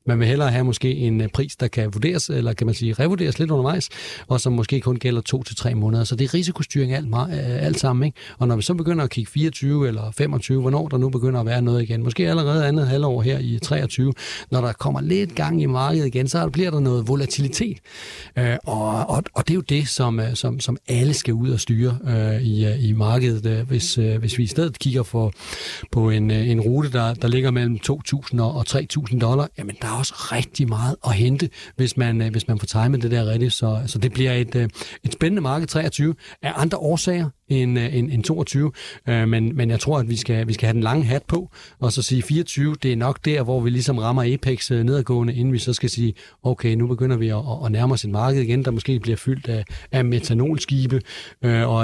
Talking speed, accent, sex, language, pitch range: 220 wpm, native, male, Danish, 115-140 Hz